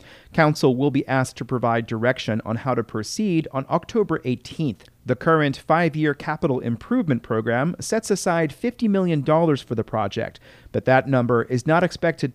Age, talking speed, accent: 40-59, 165 wpm, American